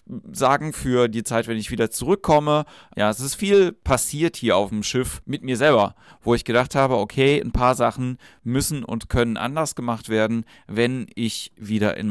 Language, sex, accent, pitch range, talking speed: German, male, German, 110-130 Hz, 190 wpm